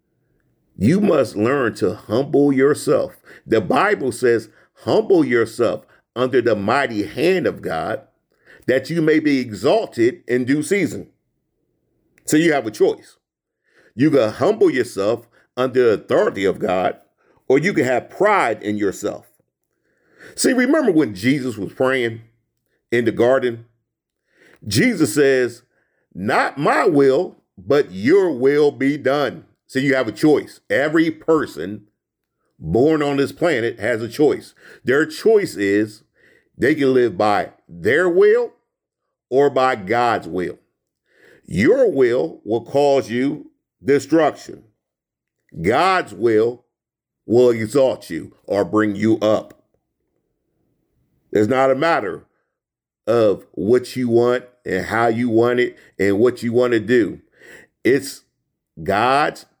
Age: 40-59